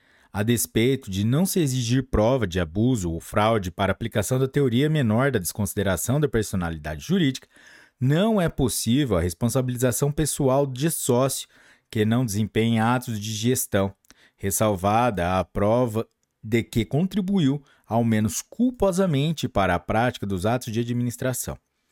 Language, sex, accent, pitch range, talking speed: Portuguese, male, Brazilian, 110-140 Hz, 140 wpm